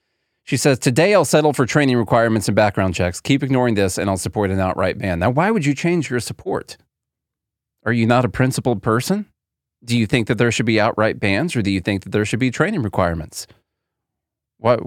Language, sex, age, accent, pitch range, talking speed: English, male, 40-59, American, 115-195 Hz, 215 wpm